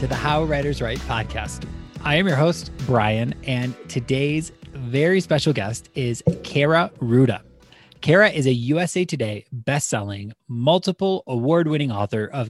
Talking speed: 140 wpm